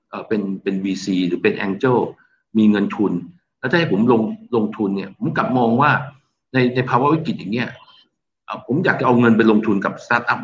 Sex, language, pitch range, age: male, Thai, 110-135 Hz, 60-79